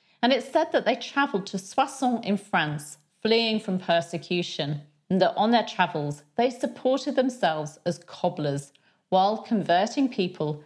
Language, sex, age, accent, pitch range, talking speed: English, female, 40-59, British, 165-225 Hz, 145 wpm